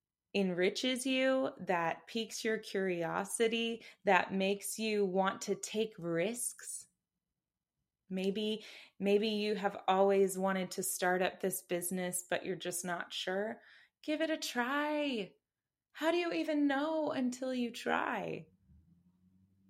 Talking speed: 125 wpm